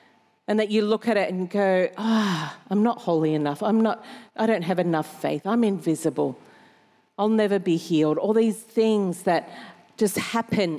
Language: English